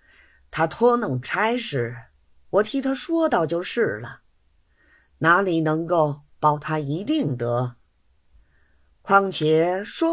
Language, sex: Chinese, female